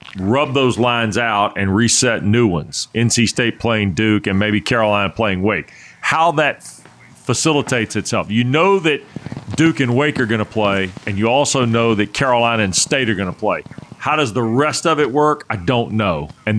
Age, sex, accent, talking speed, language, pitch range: 40-59, male, American, 195 wpm, English, 110-140 Hz